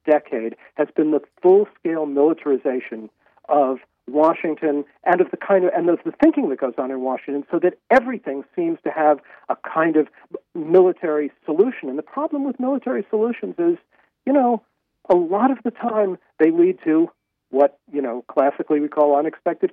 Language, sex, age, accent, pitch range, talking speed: English, male, 50-69, American, 145-215 Hz, 165 wpm